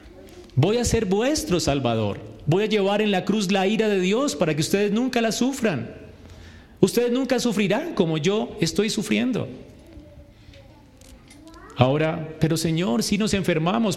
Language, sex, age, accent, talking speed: Spanish, male, 30-49, Colombian, 145 wpm